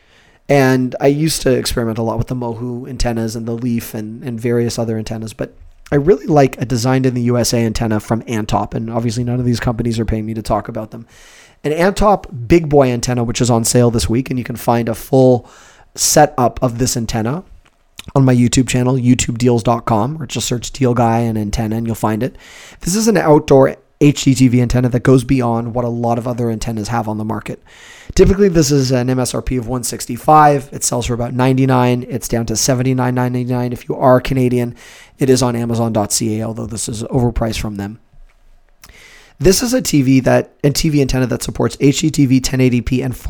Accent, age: American, 30-49